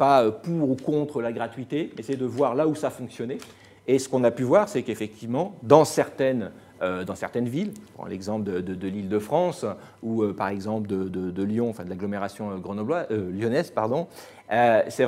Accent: French